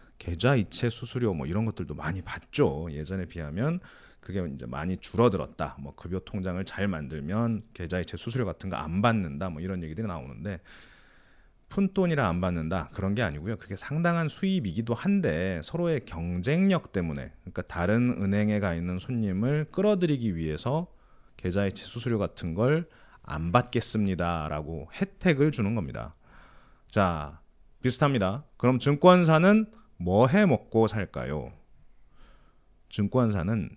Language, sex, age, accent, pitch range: Korean, male, 30-49, native, 90-125 Hz